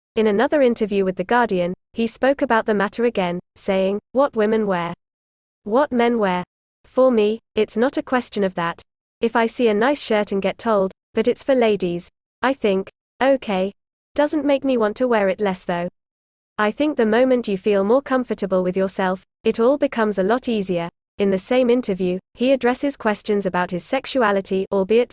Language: French